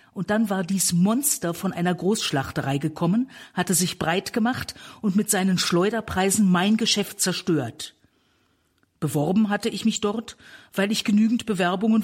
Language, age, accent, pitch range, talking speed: German, 50-69, German, 160-220 Hz, 145 wpm